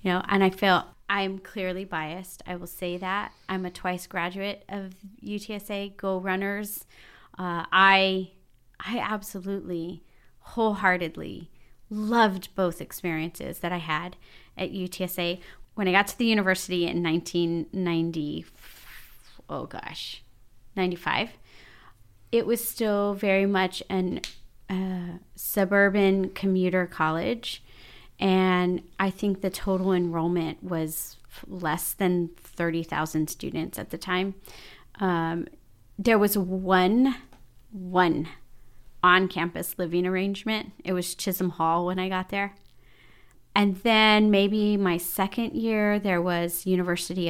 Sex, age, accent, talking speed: female, 30-49, American, 120 wpm